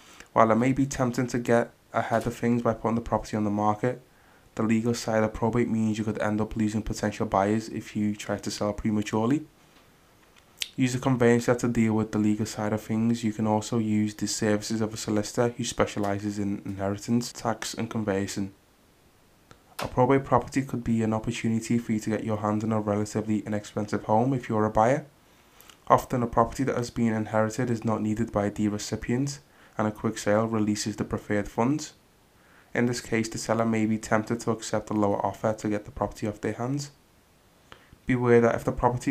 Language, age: English, 20-39